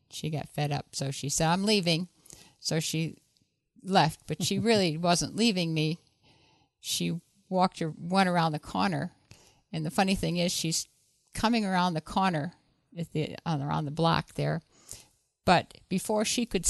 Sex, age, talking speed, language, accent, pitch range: female, 50-69, 150 wpm, English, American, 155-185 Hz